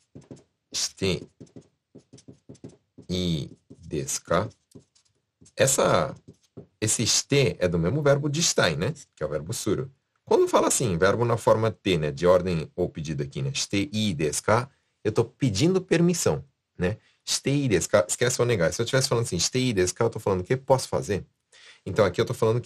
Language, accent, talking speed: Portuguese, Brazilian, 175 wpm